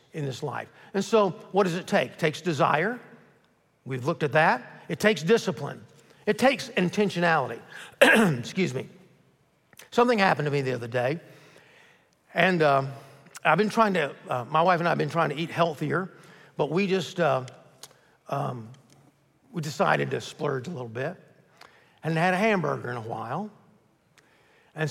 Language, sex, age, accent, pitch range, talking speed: English, male, 50-69, American, 145-190 Hz, 165 wpm